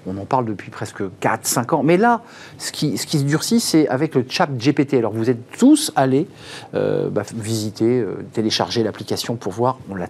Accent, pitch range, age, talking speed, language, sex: French, 110-145 Hz, 50-69, 210 wpm, French, male